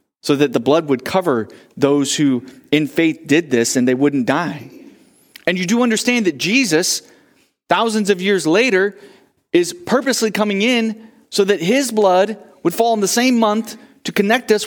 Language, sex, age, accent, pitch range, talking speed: English, male, 30-49, American, 160-225 Hz, 175 wpm